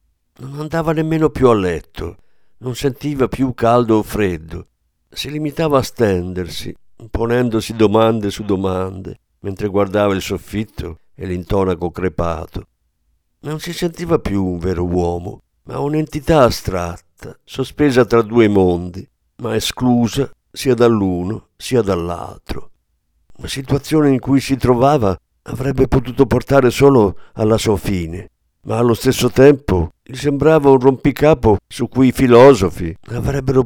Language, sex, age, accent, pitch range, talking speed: Italian, male, 50-69, native, 90-135 Hz, 130 wpm